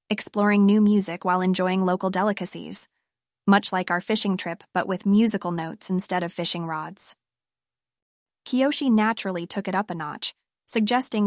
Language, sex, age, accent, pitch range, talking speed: English, female, 20-39, American, 180-210 Hz, 150 wpm